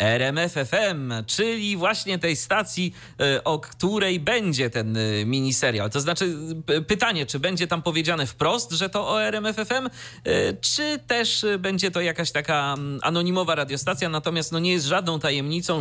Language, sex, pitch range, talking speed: Polish, male, 120-175 Hz, 135 wpm